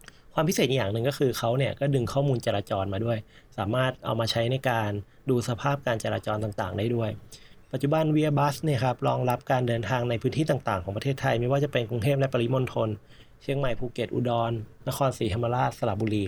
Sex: male